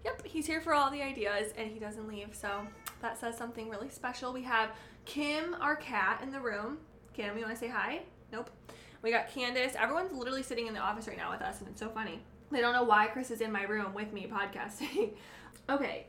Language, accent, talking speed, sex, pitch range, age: English, American, 230 wpm, female, 205-240 Hz, 20-39